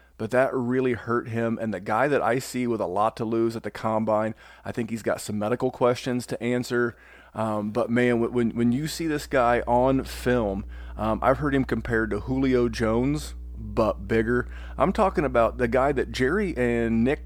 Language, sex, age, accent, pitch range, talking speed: English, male, 40-59, American, 110-135 Hz, 200 wpm